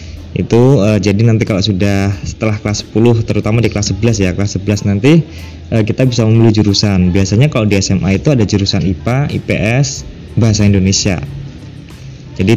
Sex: male